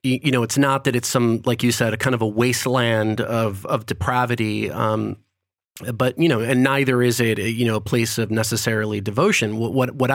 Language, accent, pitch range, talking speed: English, American, 115-135 Hz, 205 wpm